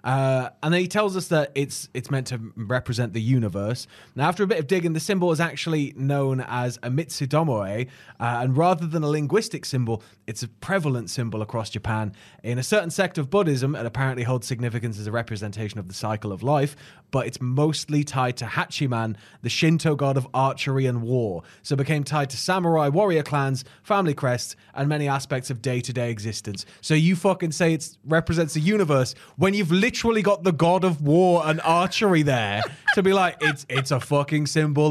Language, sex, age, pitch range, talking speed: English, male, 20-39, 125-175 Hz, 200 wpm